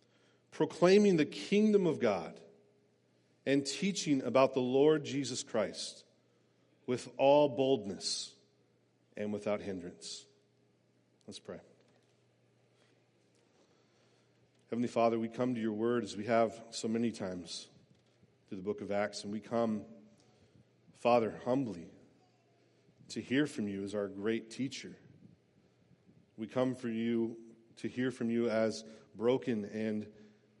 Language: English